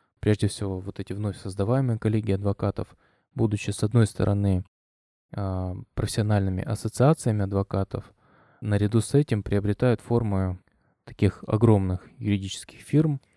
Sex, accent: male, native